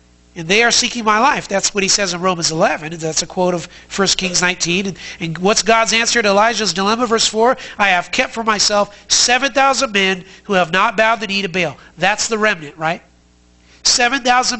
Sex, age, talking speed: male, 40-59, 205 wpm